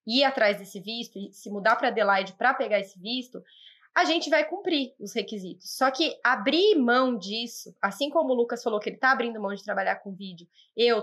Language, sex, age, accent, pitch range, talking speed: Portuguese, female, 20-39, Brazilian, 215-305 Hz, 210 wpm